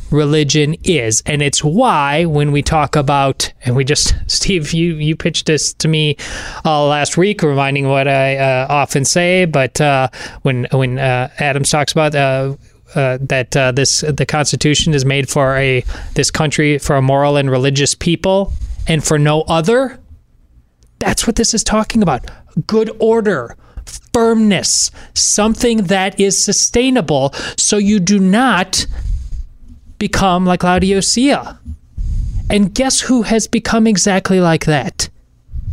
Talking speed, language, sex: 145 wpm, English, male